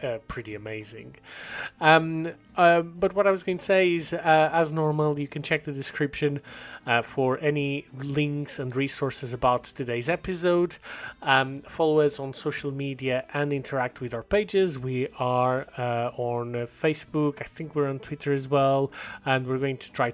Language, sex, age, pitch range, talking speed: English, male, 30-49, 130-150 Hz, 175 wpm